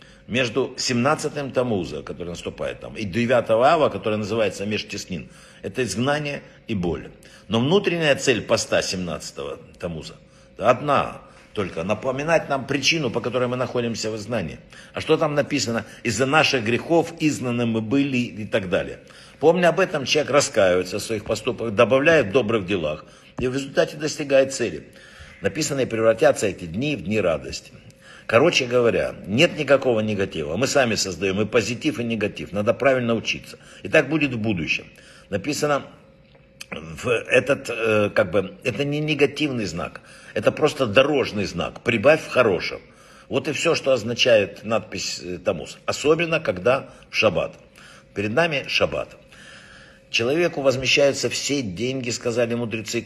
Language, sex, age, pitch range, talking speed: Russian, male, 60-79, 110-145 Hz, 140 wpm